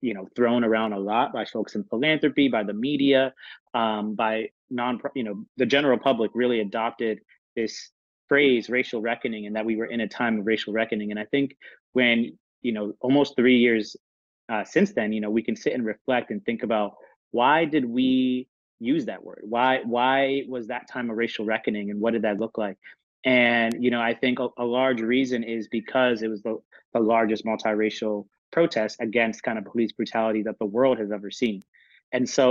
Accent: American